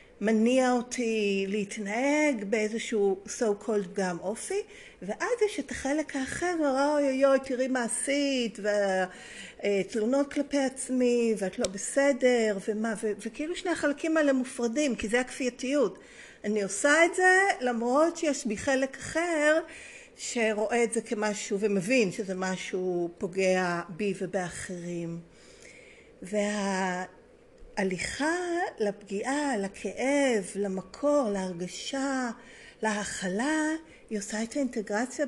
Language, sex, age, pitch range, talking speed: Hebrew, female, 50-69, 200-275 Hz, 90 wpm